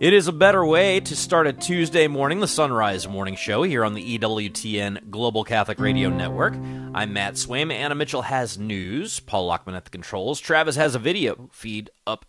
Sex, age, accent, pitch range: male, 30-49, American, 100-135 Hz